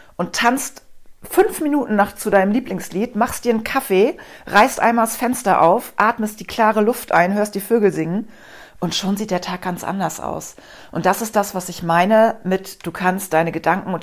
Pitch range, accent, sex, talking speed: 170-205 Hz, German, female, 200 wpm